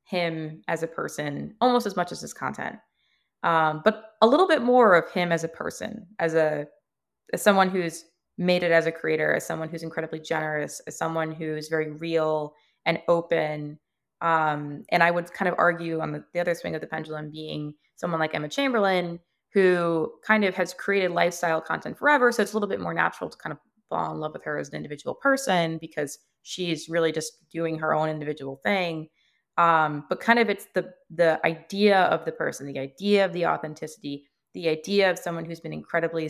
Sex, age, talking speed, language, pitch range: female, 20-39, 200 wpm, English, 155-195 Hz